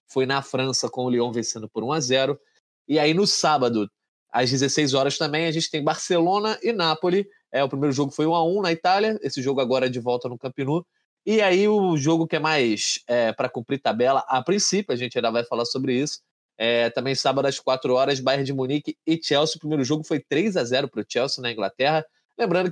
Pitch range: 125-165 Hz